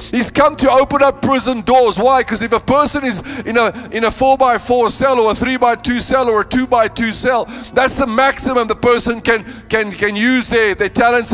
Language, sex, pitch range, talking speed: English, male, 225-260 Hz, 195 wpm